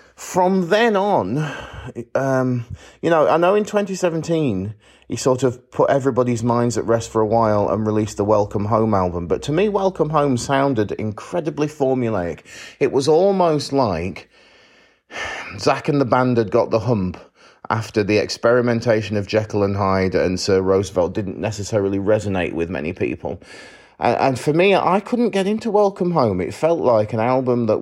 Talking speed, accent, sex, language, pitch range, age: 170 wpm, British, male, English, 100-140 Hz, 30-49